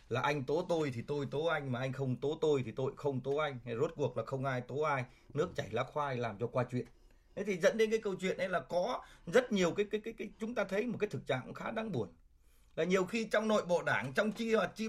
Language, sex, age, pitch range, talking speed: Vietnamese, male, 20-39, 125-190 Hz, 280 wpm